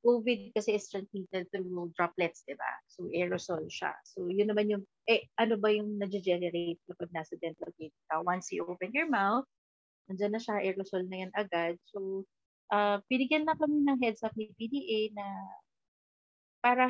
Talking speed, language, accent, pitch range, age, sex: 180 wpm, Filipino, native, 180-225 Hz, 30-49, female